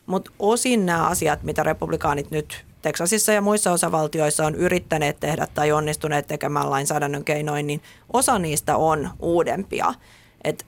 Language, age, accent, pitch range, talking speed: Finnish, 30-49, native, 150-180 Hz, 140 wpm